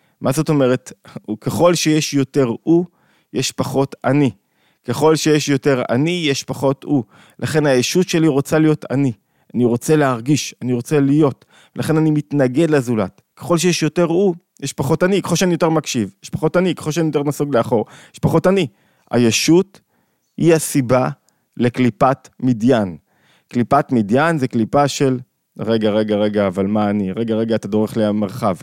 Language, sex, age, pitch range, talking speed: Hebrew, male, 20-39, 115-155 Hz, 160 wpm